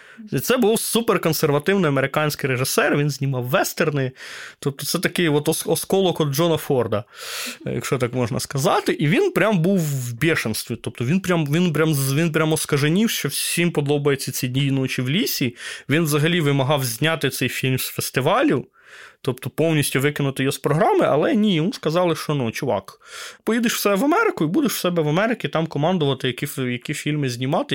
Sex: male